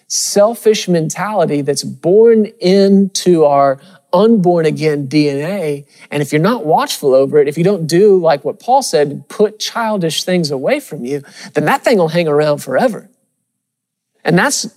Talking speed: 160 wpm